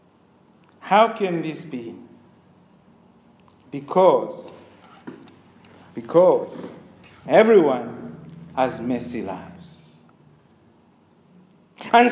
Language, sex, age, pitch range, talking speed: English, male, 50-69, 215-310 Hz, 55 wpm